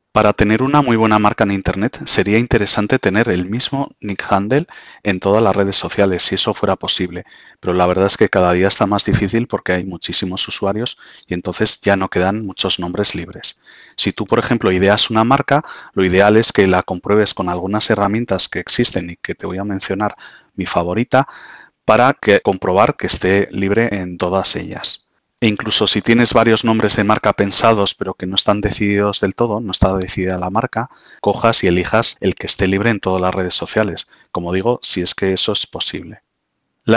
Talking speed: 195 wpm